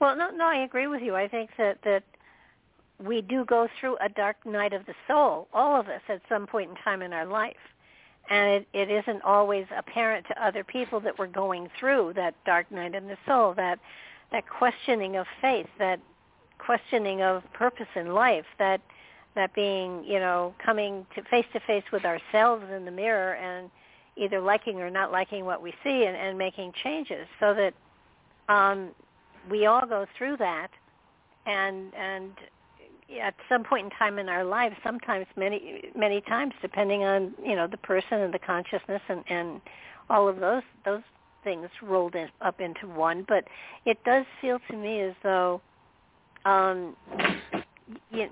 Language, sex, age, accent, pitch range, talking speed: English, female, 60-79, American, 190-225 Hz, 175 wpm